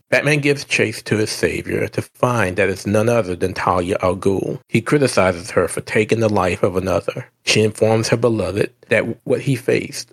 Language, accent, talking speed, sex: English, American, 195 wpm, male